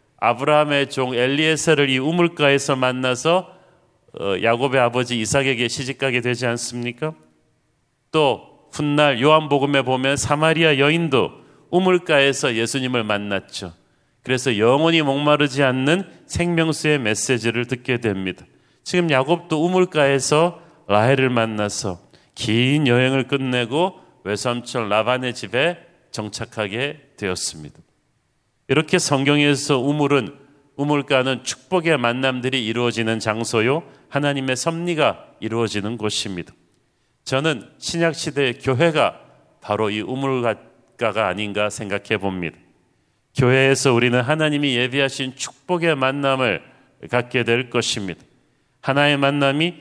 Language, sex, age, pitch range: Korean, male, 40-59, 120-150 Hz